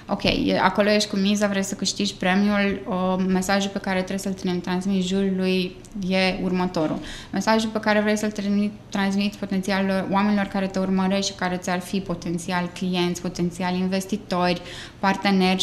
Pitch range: 185-220 Hz